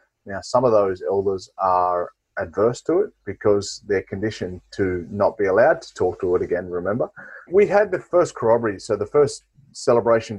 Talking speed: 180 wpm